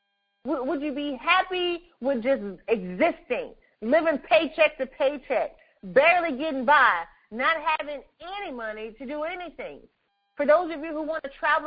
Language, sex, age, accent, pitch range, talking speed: English, female, 30-49, American, 275-340 Hz, 150 wpm